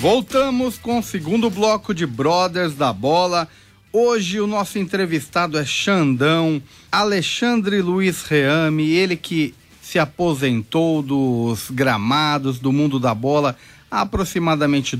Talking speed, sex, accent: 120 wpm, male, Brazilian